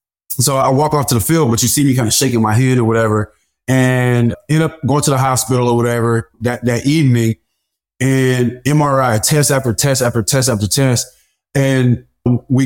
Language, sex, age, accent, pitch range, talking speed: English, male, 20-39, American, 110-135 Hz, 195 wpm